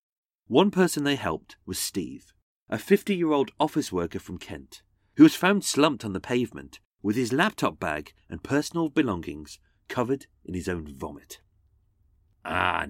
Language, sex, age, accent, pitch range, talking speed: English, male, 40-59, British, 95-155 Hz, 150 wpm